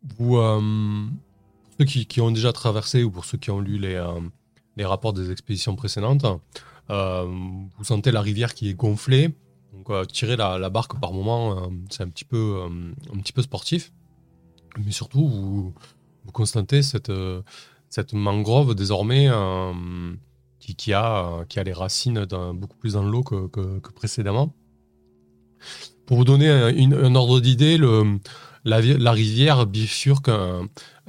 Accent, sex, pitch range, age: French, male, 100-135 Hz, 20-39